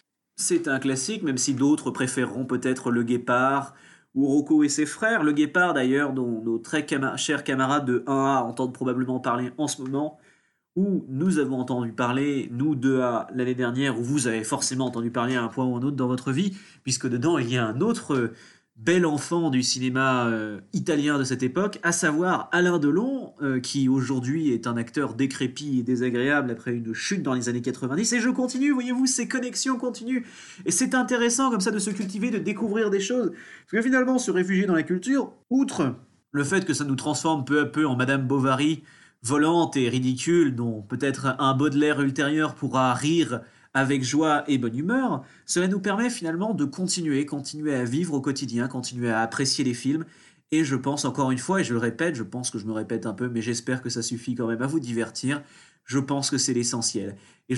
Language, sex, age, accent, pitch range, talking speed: French, male, 30-49, French, 130-170 Hz, 205 wpm